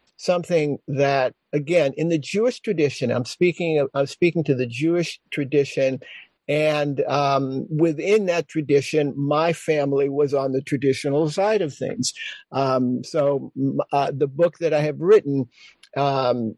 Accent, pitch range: American, 140-175 Hz